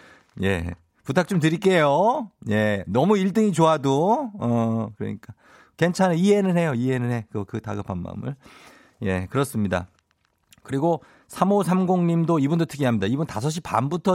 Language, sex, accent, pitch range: Korean, male, native, 105-160 Hz